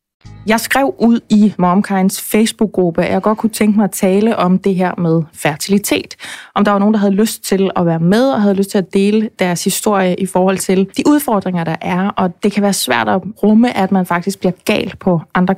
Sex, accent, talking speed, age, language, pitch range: female, native, 225 wpm, 20-39, Danish, 180-220 Hz